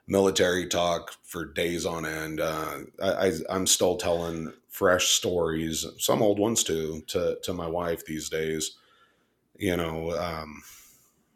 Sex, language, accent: male, English, American